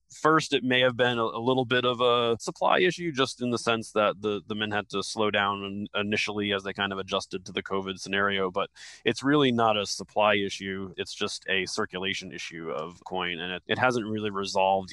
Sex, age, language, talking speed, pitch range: male, 20-39, English, 215 wpm, 95-110 Hz